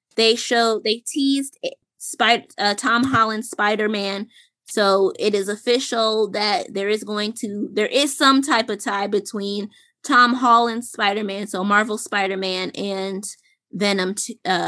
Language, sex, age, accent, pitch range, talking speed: English, female, 20-39, American, 200-245 Hz, 140 wpm